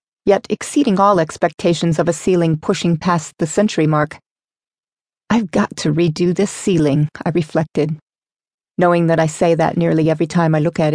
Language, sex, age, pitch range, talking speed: English, female, 30-49, 160-180 Hz, 170 wpm